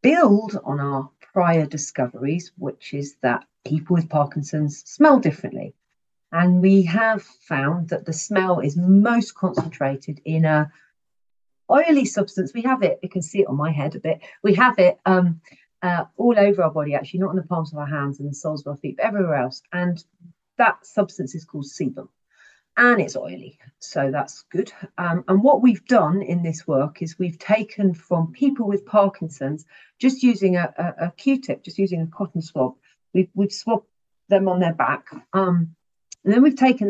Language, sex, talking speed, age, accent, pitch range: English, female, 185 wpm, 40-59, British, 160-205 Hz